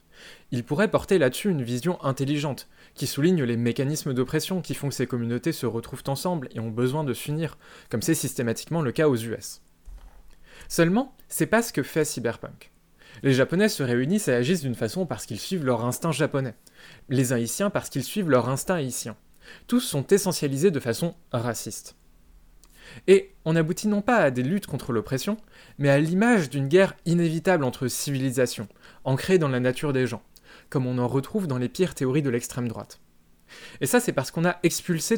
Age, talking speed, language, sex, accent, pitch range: 20-39, 185 wpm, French, male, French, 120-170 Hz